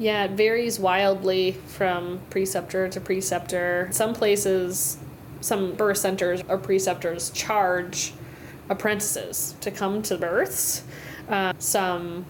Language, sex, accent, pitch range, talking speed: English, female, American, 170-200 Hz, 110 wpm